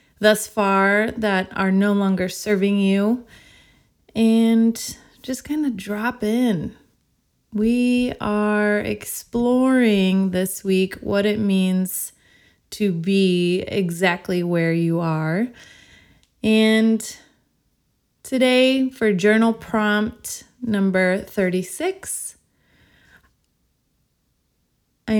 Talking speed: 85 wpm